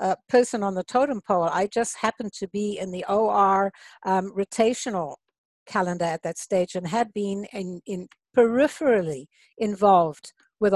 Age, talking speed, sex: 60-79, 155 wpm, female